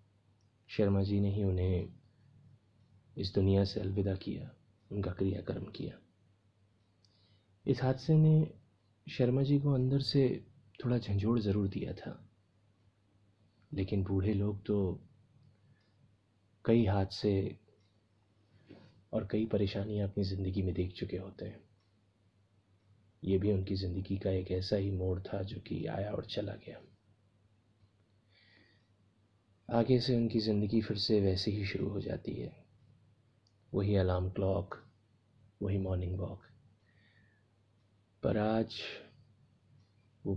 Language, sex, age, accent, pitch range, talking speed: Hindi, male, 30-49, native, 100-110 Hz, 115 wpm